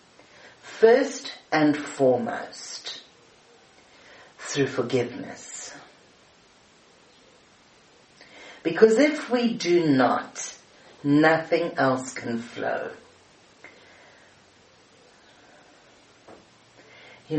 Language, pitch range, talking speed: English, 125-155 Hz, 50 wpm